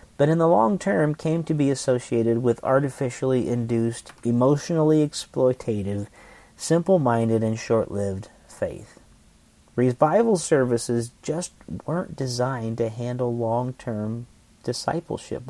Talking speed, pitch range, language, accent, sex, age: 105 wpm, 115-150 Hz, English, American, male, 40-59